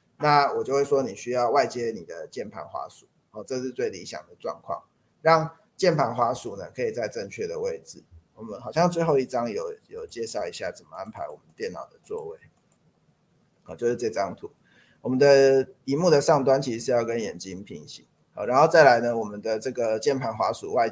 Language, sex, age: Chinese, male, 20-39